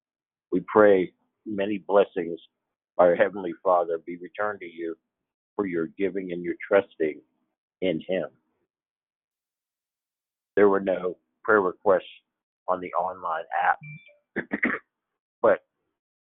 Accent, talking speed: American, 110 wpm